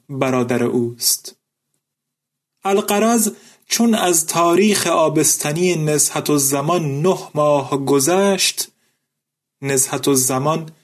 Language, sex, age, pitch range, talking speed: Persian, male, 30-49, 140-185 Hz, 80 wpm